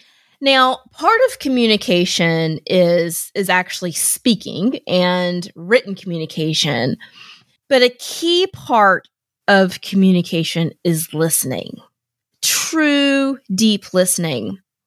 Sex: female